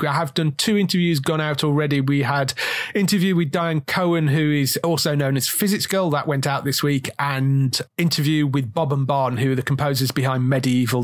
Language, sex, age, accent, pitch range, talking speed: English, male, 30-49, British, 135-165 Hz, 205 wpm